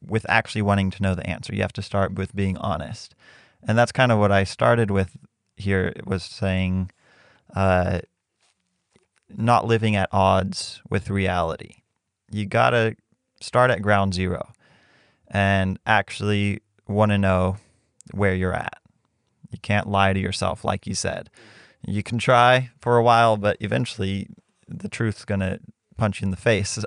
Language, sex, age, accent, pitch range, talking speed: English, male, 20-39, American, 95-110 Hz, 155 wpm